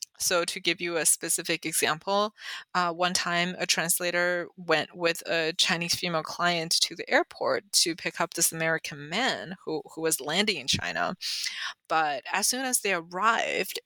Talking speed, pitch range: 170 wpm, 165-195 Hz